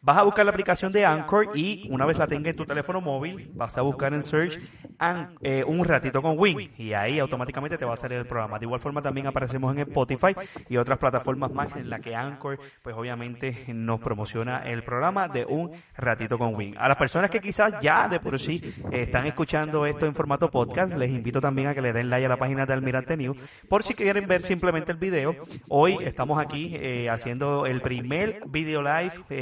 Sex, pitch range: male, 125-155 Hz